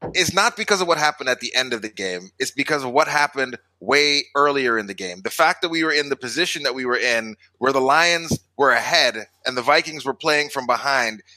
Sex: male